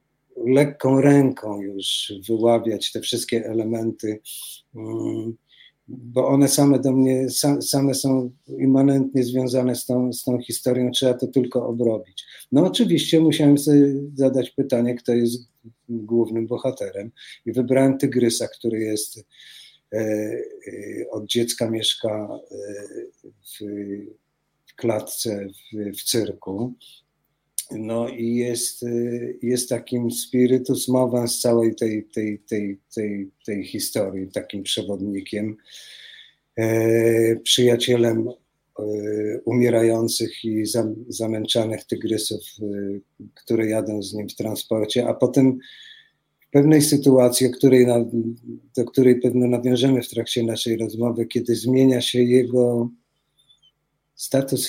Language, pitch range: Polish, 110-130 Hz